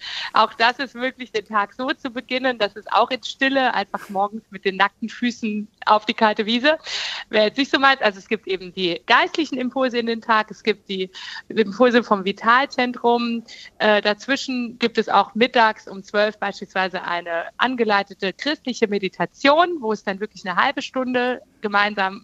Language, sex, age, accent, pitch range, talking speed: German, female, 50-69, German, 205-250 Hz, 180 wpm